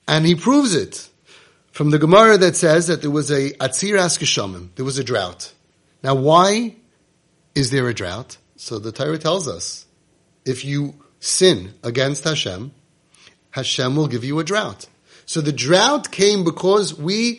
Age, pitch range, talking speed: 30-49, 135-180 Hz, 155 wpm